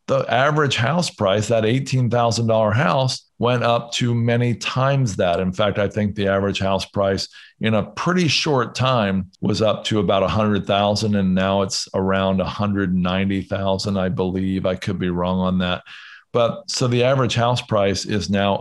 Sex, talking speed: male, 170 wpm